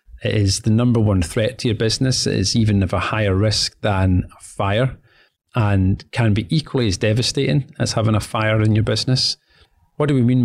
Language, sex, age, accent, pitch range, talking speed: English, male, 30-49, British, 100-120 Hz, 205 wpm